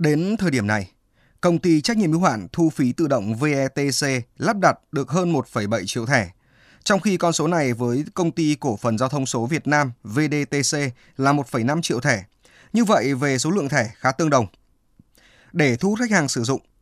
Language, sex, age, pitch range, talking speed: Vietnamese, male, 20-39, 120-160 Hz, 205 wpm